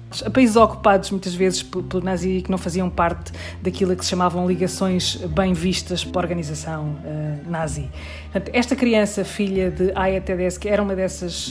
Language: Portuguese